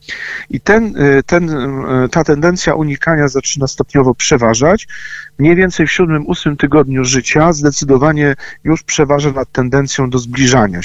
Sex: male